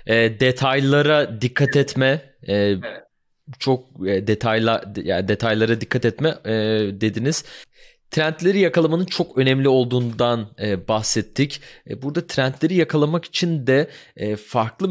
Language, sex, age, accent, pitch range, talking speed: Turkish, male, 30-49, native, 105-135 Hz, 90 wpm